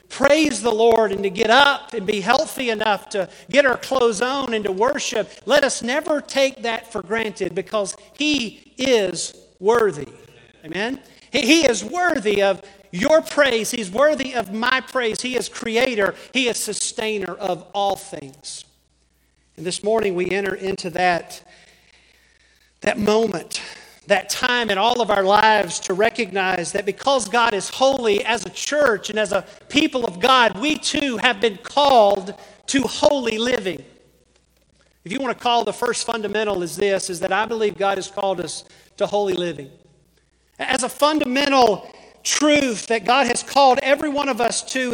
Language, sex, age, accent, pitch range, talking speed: English, male, 50-69, American, 200-260 Hz, 165 wpm